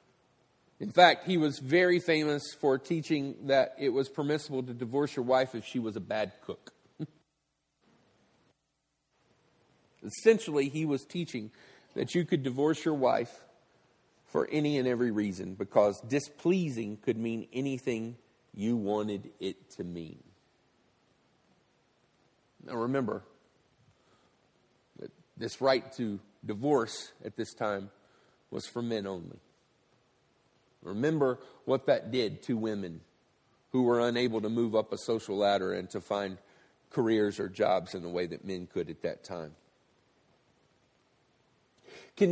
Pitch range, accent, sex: 120-175 Hz, American, male